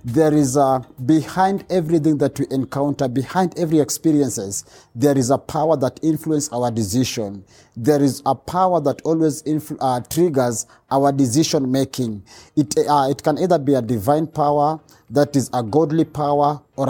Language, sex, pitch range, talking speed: English, male, 130-160 Hz, 165 wpm